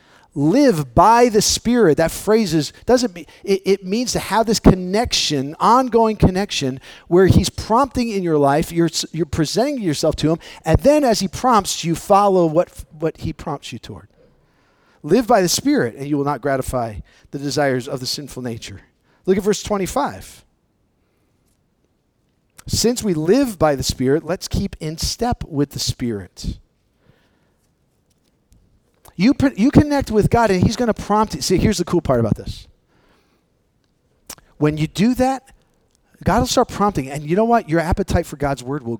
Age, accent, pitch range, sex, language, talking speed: 40-59, American, 140-215 Hz, male, English, 170 wpm